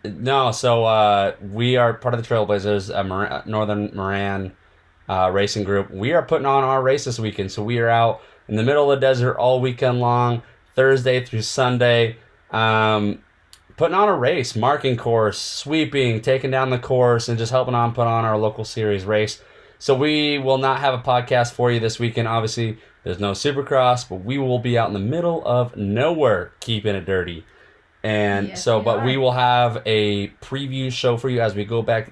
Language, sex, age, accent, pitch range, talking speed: English, male, 30-49, American, 105-130 Hz, 190 wpm